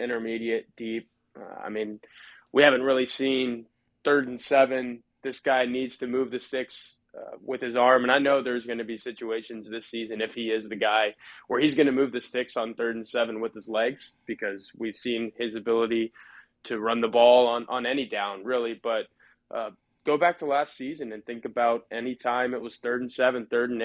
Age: 20-39